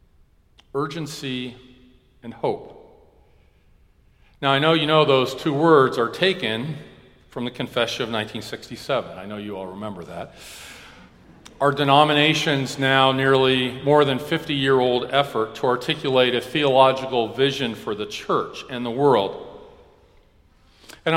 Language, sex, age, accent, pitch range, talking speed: English, male, 50-69, American, 115-140 Hz, 125 wpm